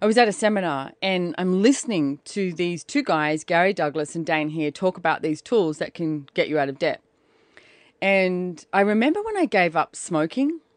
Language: English